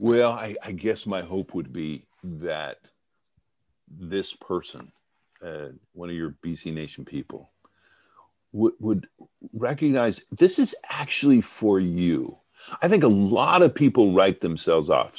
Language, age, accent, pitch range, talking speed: English, 50-69, American, 90-130 Hz, 140 wpm